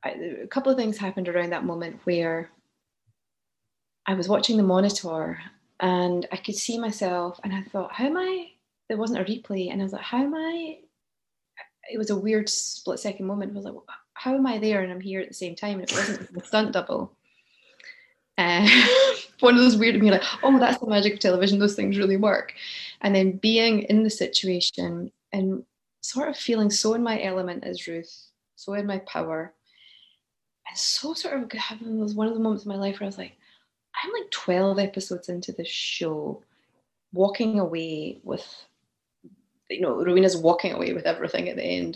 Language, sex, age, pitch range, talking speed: English, female, 20-39, 175-225 Hz, 195 wpm